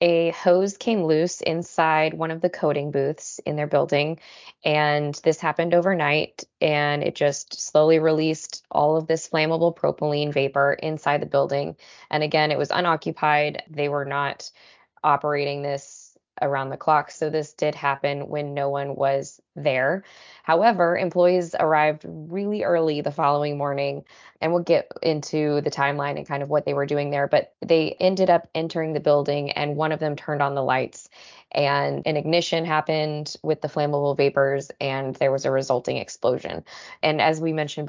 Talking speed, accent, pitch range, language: 170 wpm, American, 140-160 Hz, English